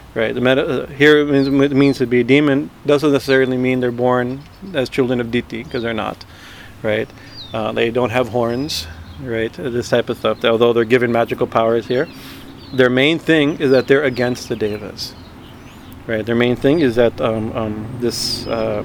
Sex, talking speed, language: male, 180 wpm, English